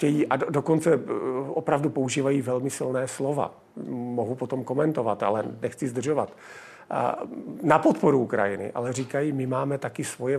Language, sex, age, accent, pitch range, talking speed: Czech, male, 50-69, native, 130-160 Hz, 125 wpm